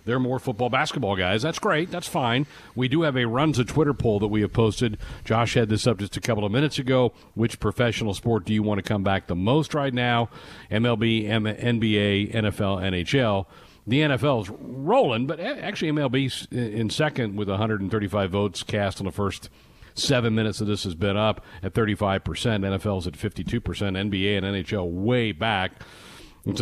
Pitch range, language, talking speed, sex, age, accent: 105-140 Hz, English, 185 wpm, male, 50-69, American